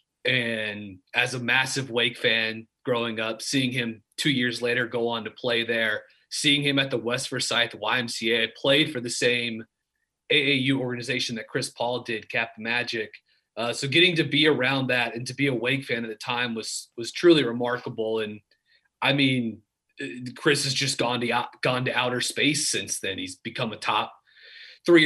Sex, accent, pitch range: male, American, 120-145 Hz